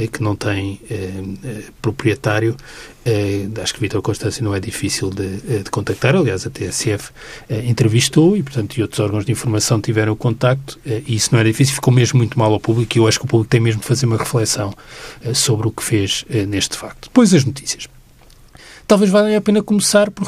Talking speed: 205 wpm